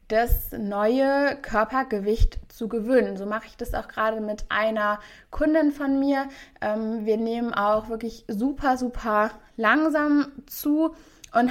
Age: 20-39